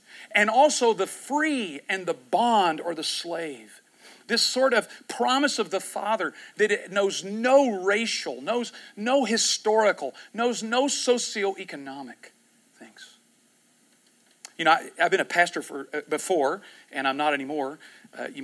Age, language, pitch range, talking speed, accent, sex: 40-59, English, 165-240 Hz, 145 wpm, American, male